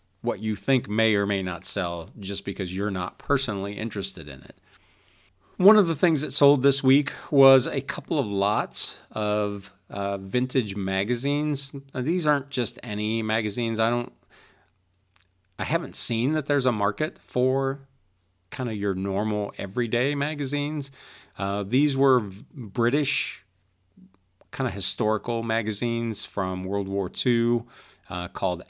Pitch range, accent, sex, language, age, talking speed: 95-130 Hz, American, male, English, 40-59, 145 wpm